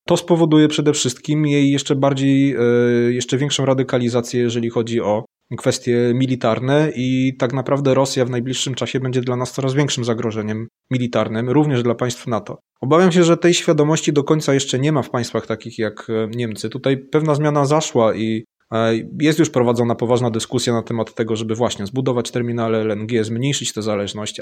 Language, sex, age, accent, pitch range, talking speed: Polish, male, 20-39, native, 120-145 Hz, 170 wpm